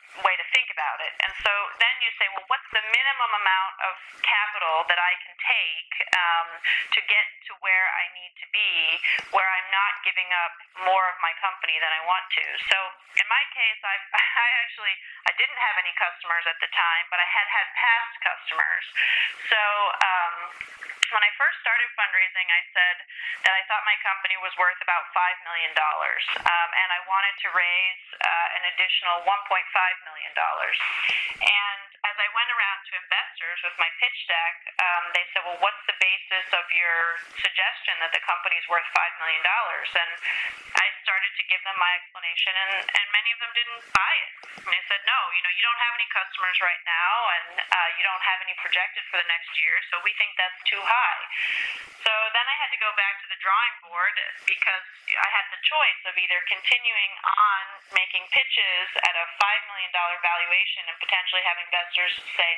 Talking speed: 195 wpm